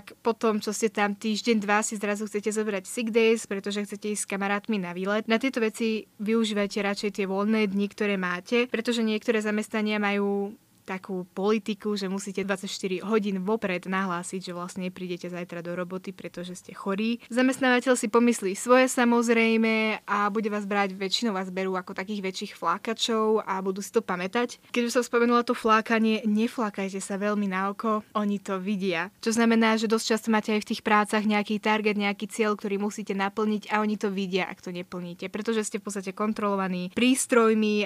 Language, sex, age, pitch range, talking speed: Slovak, female, 20-39, 195-225 Hz, 180 wpm